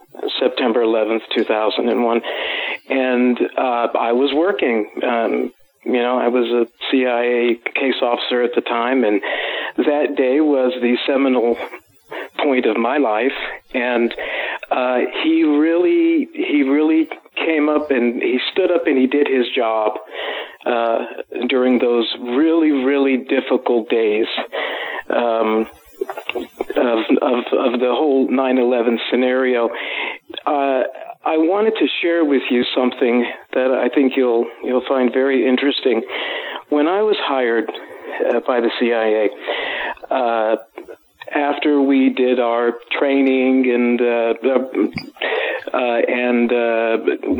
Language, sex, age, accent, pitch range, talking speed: English, male, 50-69, American, 120-150 Hz, 125 wpm